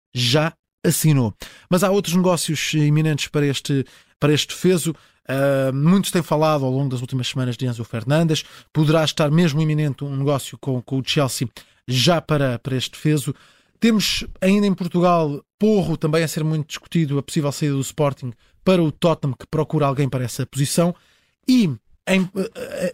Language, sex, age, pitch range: Portuguese, male, 20-39, 145-185 Hz